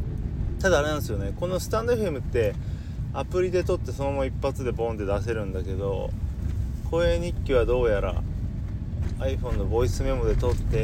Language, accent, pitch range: Japanese, native, 85-110 Hz